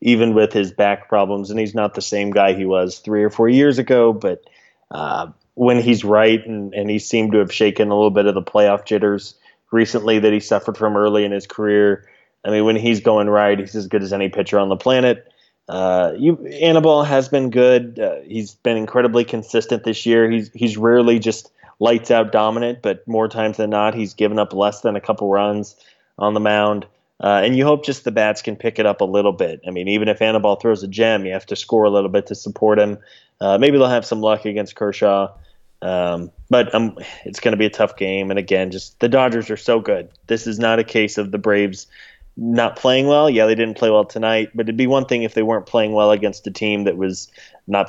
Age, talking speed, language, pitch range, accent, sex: 20-39, 235 wpm, English, 100-115 Hz, American, male